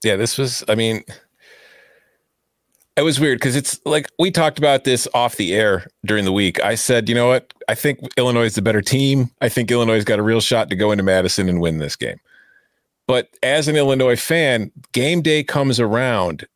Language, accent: English, American